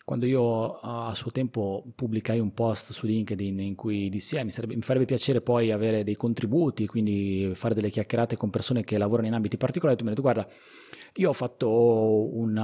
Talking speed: 205 wpm